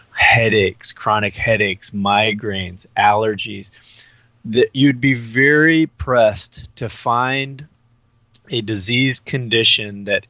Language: English